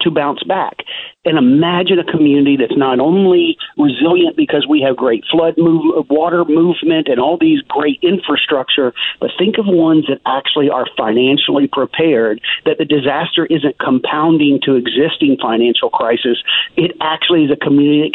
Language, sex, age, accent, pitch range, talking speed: English, male, 50-69, American, 140-185 Hz, 155 wpm